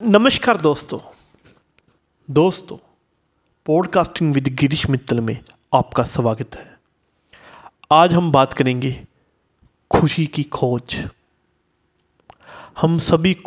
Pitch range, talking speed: 135-210 Hz, 90 wpm